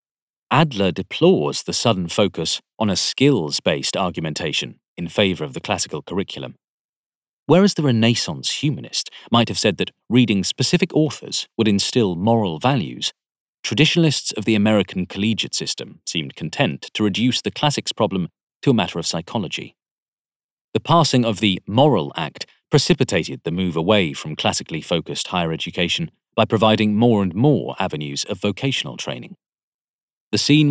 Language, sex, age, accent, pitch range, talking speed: English, male, 40-59, British, 95-130 Hz, 145 wpm